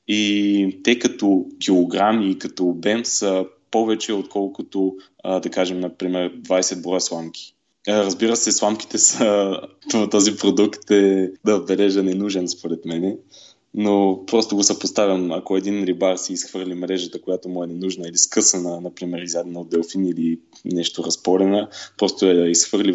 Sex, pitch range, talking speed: male, 90-105 Hz, 140 wpm